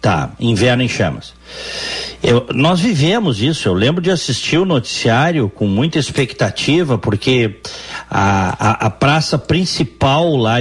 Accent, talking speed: Brazilian, 135 wpm